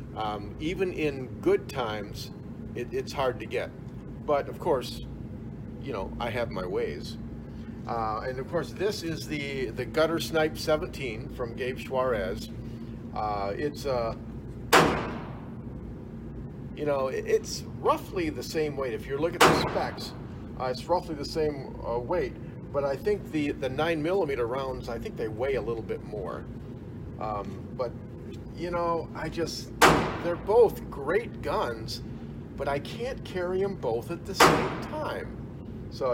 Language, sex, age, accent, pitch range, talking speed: English, male, 50-69, American, 115-160 Hz, 155 wpm